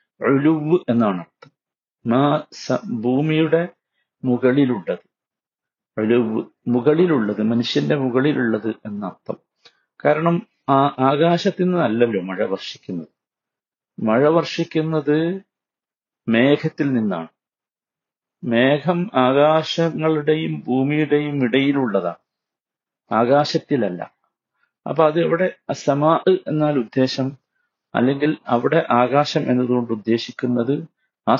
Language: Malayalam